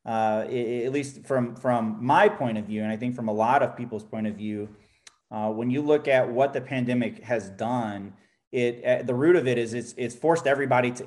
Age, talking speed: 30-49, 235 wpm